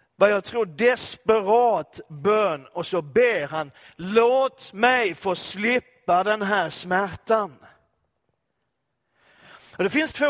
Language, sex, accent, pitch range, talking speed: Swedish, male, native, 165-235 Hz, 110 wpm